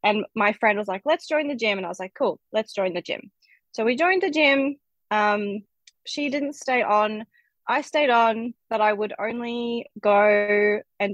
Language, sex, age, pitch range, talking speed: English, female, 20-39, 210-285 Hz, 200 wpm